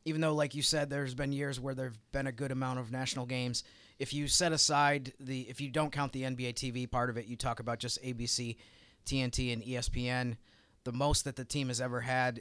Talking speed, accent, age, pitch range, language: 235 wpm, American, 30-49, 120-135 Hz, English